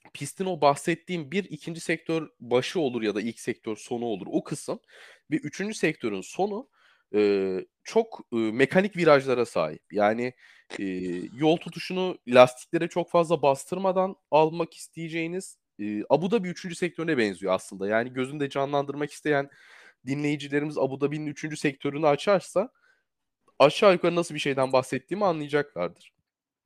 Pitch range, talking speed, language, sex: 110-175 Hz, 135 wpm, Turkish, male